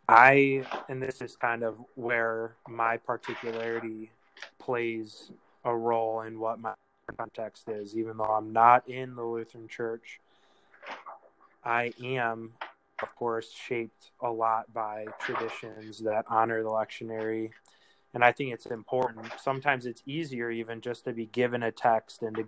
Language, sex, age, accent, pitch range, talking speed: English, male, 20-39, American, 115-125 Hz, 145 wpm